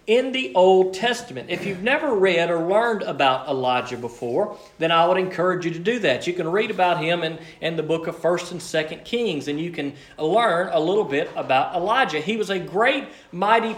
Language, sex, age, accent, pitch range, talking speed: English, male, 40-59, American, 165-225 Hz, 215 wpm